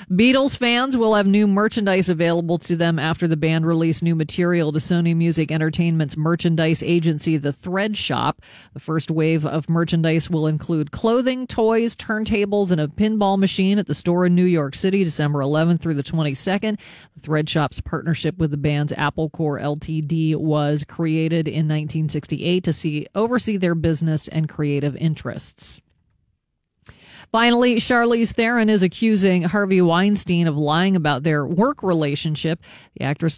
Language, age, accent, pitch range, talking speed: English, 40-59, American, 160-190 Hz, 155 wpm